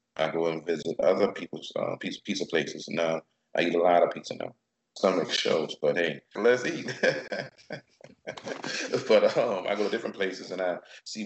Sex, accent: male, American